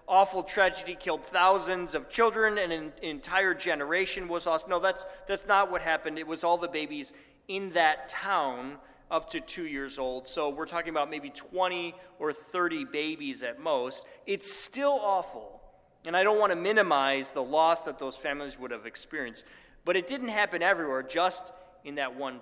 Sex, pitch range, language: male, 160-210 Hz, English